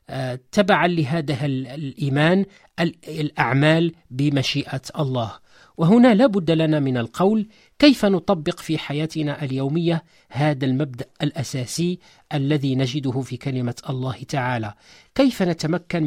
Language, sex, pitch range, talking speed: Arabic, male, 135-180 Hz, 105 wpm